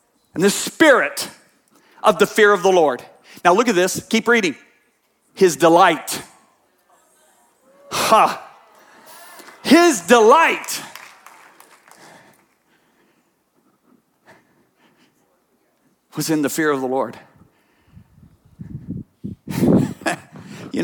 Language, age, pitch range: English, 50-69, 130-180 Hz